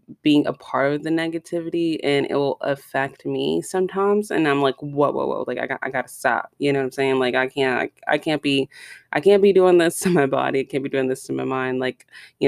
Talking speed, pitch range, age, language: 260 wpm, 135-155 Hz, 20-39, English